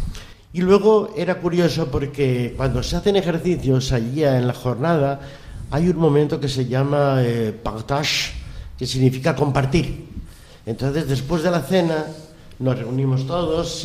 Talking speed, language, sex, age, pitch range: 140 wpm, Spanish, male, 60-79, 120-170 Hz